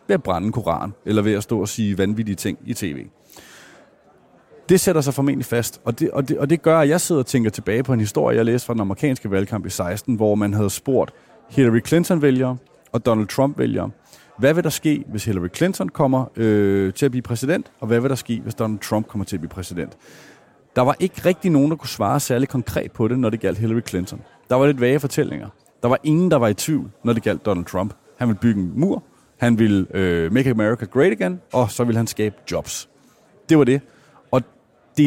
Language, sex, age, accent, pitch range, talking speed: Danish, male, 30-49, native, 110-145 Hz, 235 wpm